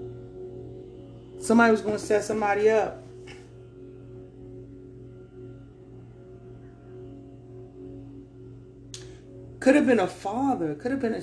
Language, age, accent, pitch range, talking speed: English, 30-49, American, 125-205 Hz, 85 wpm